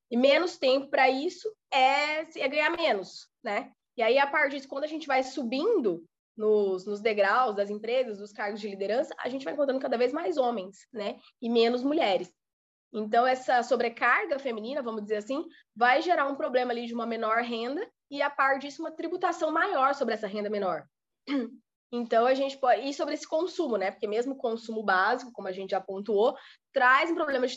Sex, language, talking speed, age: female, Portuguese, 200 wpm, 20-39